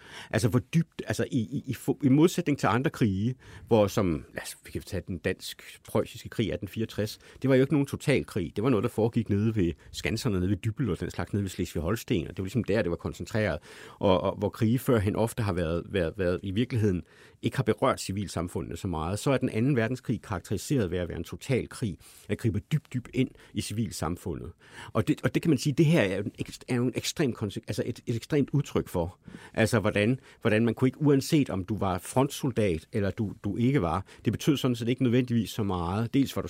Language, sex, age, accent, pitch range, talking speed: Danish, male, 60-79, native, 95-125 Hz, 225 wpm